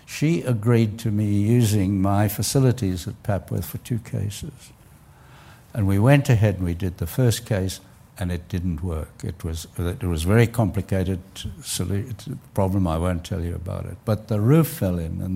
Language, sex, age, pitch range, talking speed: English, male, 60-79, 95-125 Hz, 170 wpm